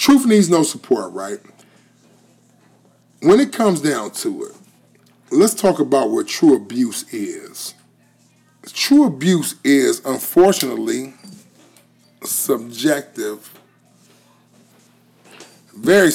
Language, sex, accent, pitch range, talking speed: English, male, American, 150-250 Hz, 90 wpm